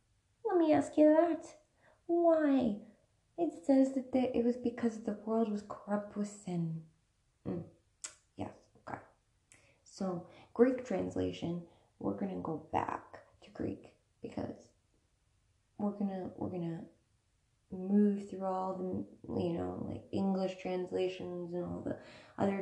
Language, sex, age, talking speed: English, female, 20-39, 125 wpm